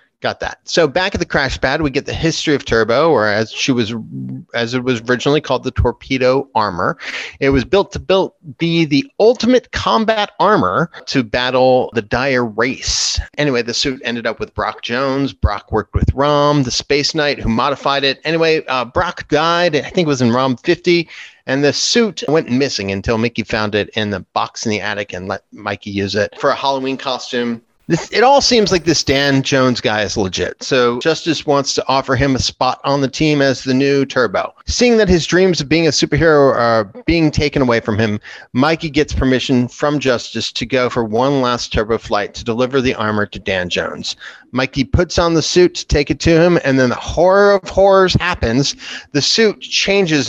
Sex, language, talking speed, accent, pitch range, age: male, English, 205 wpm, American, 120-165 Hz, 30-49